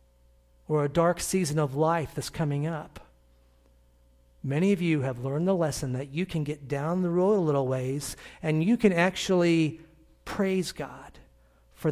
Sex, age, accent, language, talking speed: male, 40-59, American, English, 165 wpm